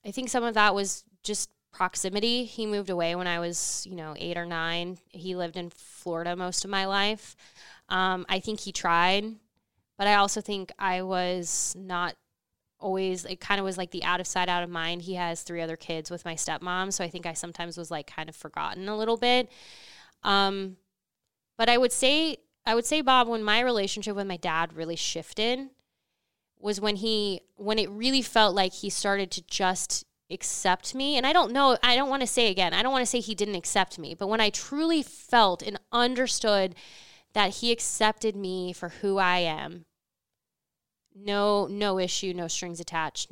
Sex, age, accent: female, 10-29, American